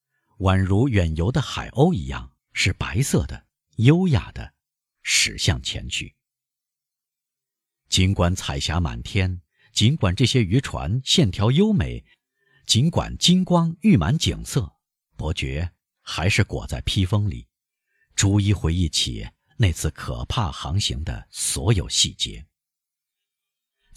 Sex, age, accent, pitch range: male, 50-69, native, 90-140 Hz